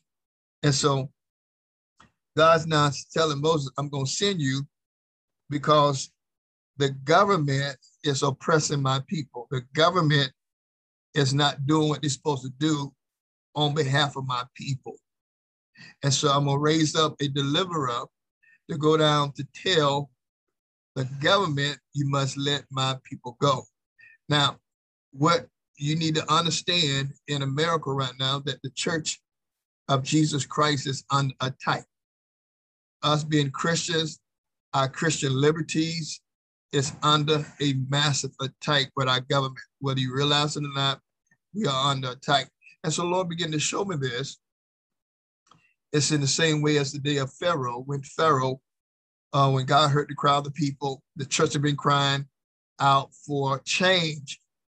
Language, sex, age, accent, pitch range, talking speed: English, male, 50-69, American, 135-150 Hz, 150 wpm